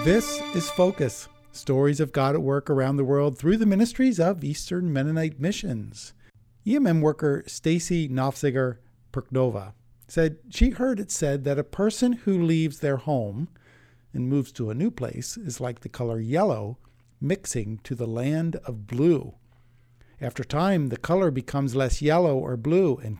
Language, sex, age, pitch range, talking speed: English, male, 50-69, 120-165 Hz, 160 wpm